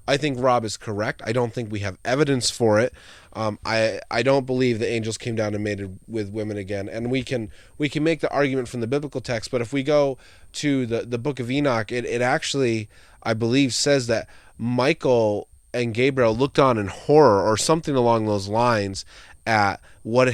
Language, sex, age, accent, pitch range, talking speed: English, male, 20-39, American, 105-135 Hz, 205 wpm